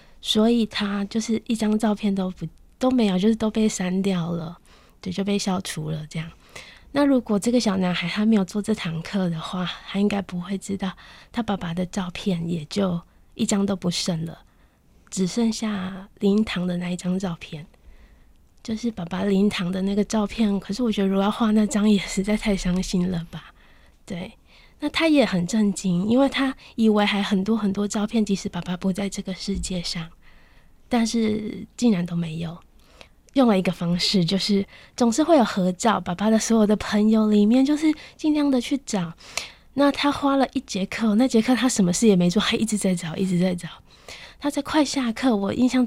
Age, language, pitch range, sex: 20-39, Chinese, 185-220 Hz, female